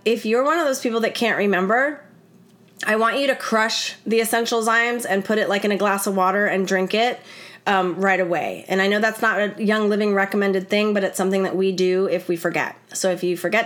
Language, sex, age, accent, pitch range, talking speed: English, female, 30-49, American, 185-225 Hz, 240 wpm